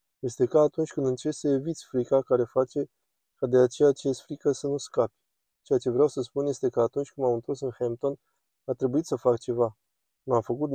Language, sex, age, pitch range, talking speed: Romanian, male, 20-39, 125-145 Hz, 220 wpm